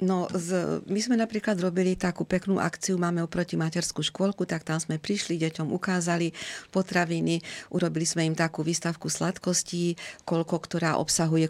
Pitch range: 160-180 Hz